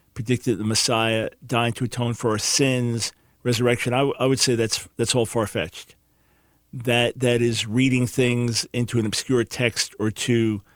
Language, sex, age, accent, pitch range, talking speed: English, male, 50-69, American, 115-135 Hz, 165 wpm